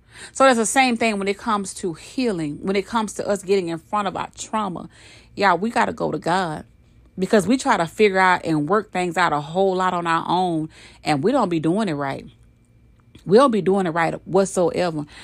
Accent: American